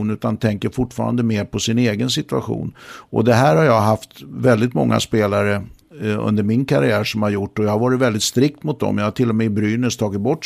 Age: 60-79